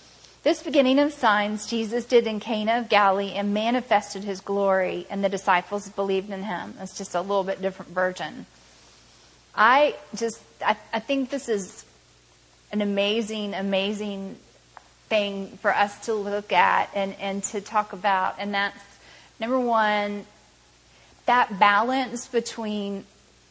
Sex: female